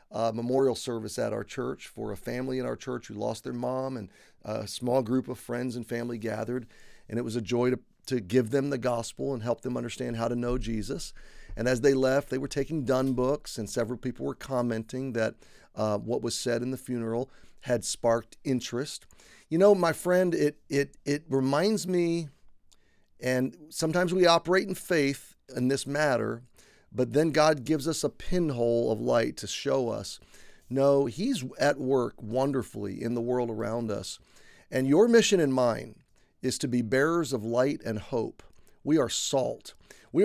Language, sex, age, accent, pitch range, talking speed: English, male, 40-59, American, 120-140 Hz, 190 wpm